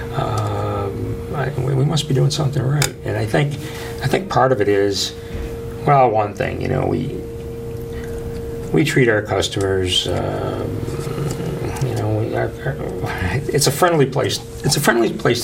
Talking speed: 155 wpm